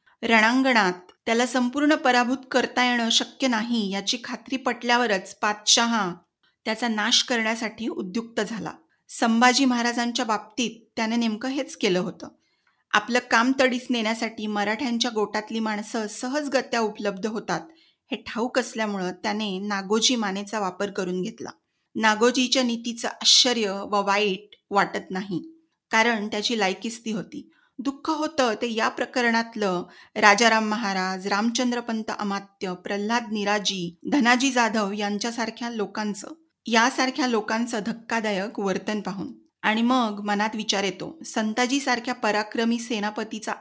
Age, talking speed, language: 30-49, 115 wpm, Marathi